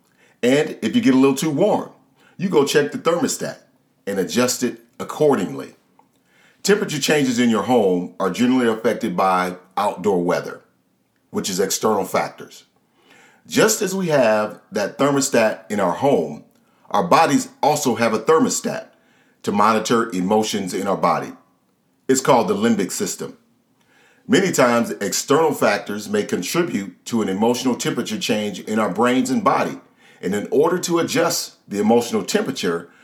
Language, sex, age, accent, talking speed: English, male, 40-59, American, 150 wpm